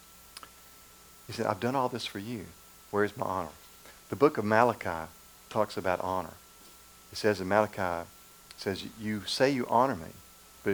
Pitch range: 90-110 Hz